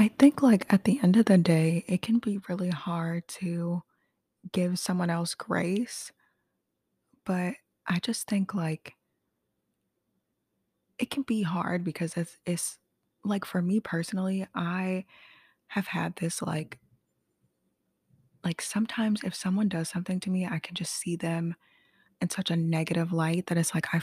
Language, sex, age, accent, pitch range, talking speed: English, female, 20-39, American, 165-205 Hz, 155 wpm